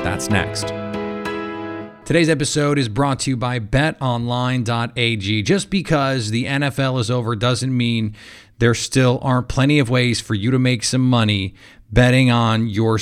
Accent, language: American, English